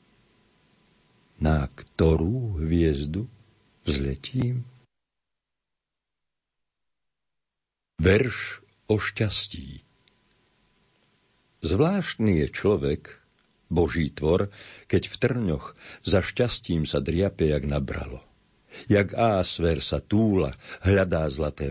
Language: Slovak